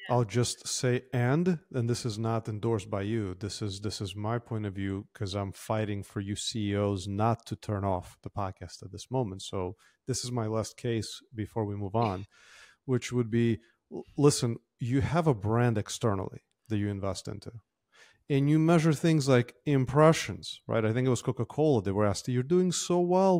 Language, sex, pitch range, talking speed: English, male, 110-145 Hz, 195 wpm